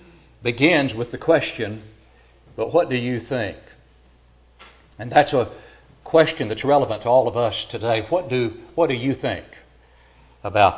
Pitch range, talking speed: 110-160 Hz, 150 wpm